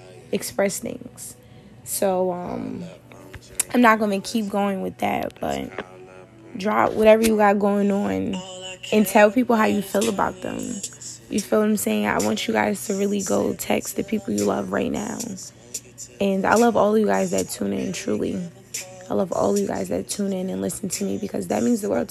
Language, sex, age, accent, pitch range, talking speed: English, female, 20-39, American, 170-215 Hz, 200 wpm